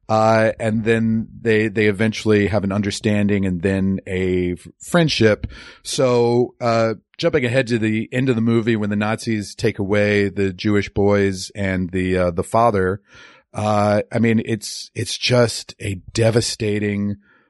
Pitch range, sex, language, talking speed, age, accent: 100-115 Hz, male, English, 155 wpm, 40-59, American